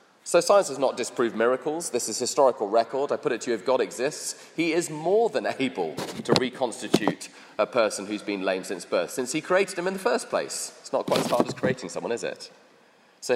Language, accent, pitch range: English, British, 125-180 Hz